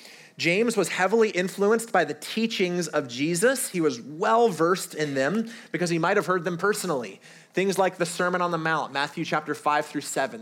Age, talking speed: 30-49, 185 wpm